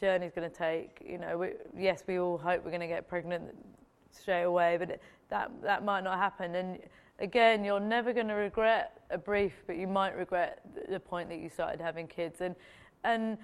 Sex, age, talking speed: female, 20-39, 215 wpm